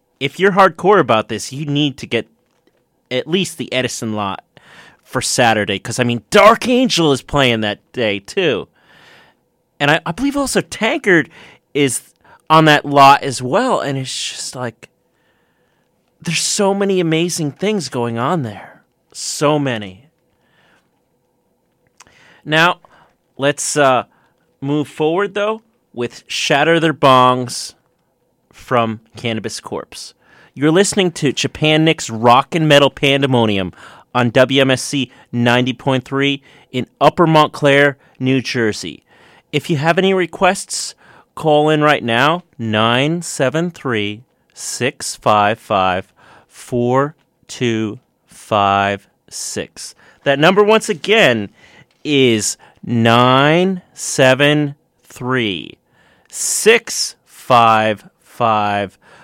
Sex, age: male, 30-49